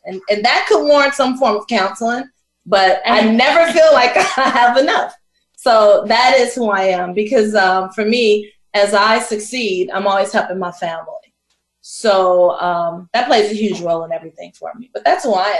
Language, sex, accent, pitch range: English, female, American, 185-240 Hz